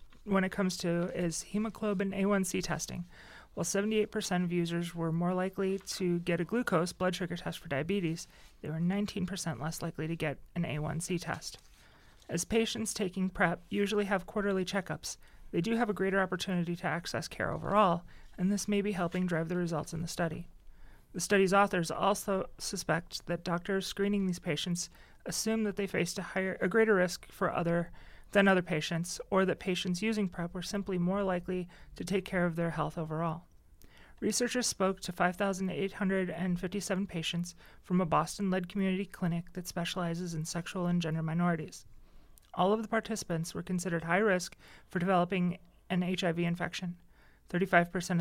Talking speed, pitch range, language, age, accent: 165 wpm, 170-195 Hz, English, 30-49, American